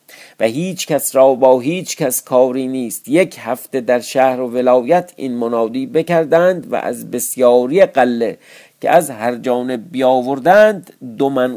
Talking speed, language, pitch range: 145 wpm, Persian, 110-140 Hz